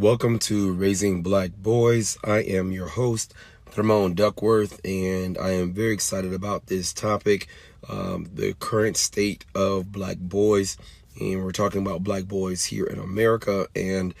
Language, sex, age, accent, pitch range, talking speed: English, male, 30-49, American, 95-105 Hz, 150 wpm